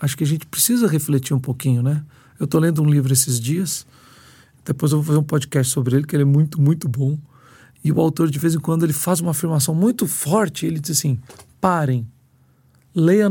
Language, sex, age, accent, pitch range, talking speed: Portuguese, male, 50-69, Brazilian, 135-180 Hz, 215 wpm